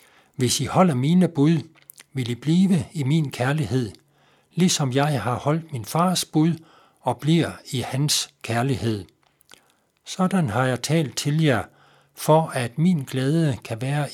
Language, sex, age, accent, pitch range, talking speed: Danish, male, 60-79, native, 125-160 Hz, 150 wpm